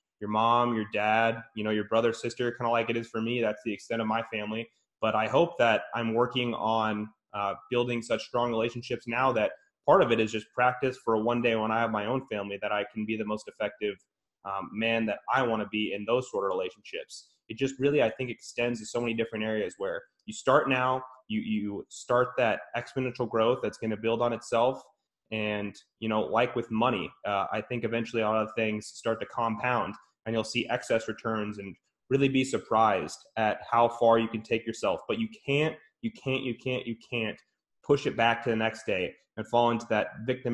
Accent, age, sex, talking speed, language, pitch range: American, 20-39, male, 225 wpm, English, 110-125 Hz